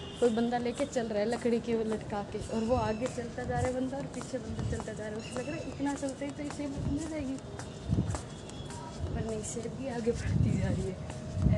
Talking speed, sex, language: 240 wpm, female, Hindi